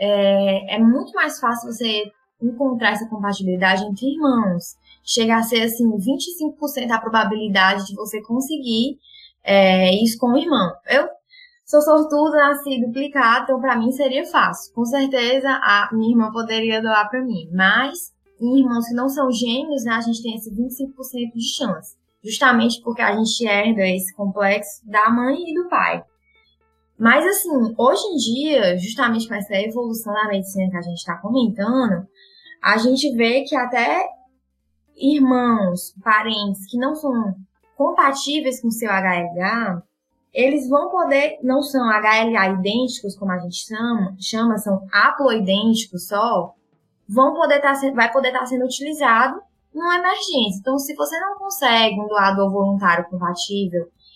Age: 20-39